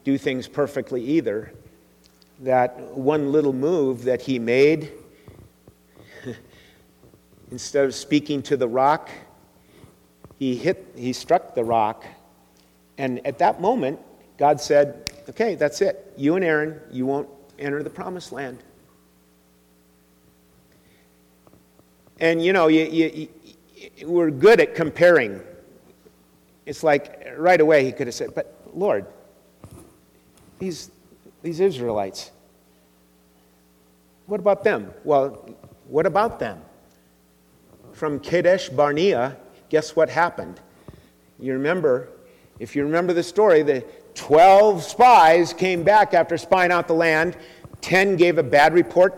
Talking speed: 120 wpm